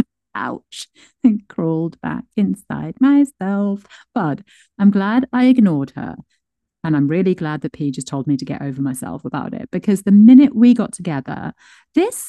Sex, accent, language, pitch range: female, British, English, 150-235 Hz